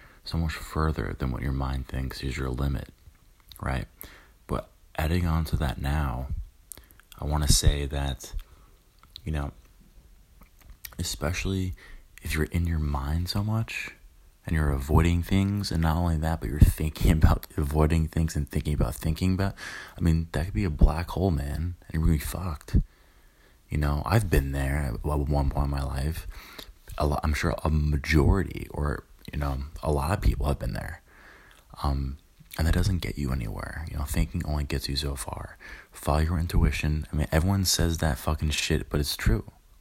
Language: English